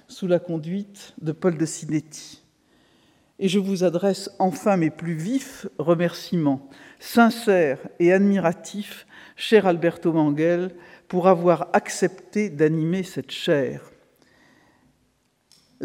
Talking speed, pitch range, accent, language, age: 110 wpm, 165-205 Hz, French, French, 50-69